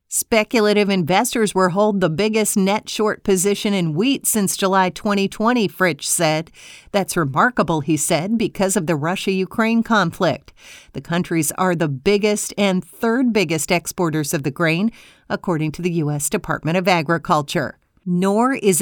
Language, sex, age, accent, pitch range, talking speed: English, female, 50-69, American, 170-215 Hz, 145 wpm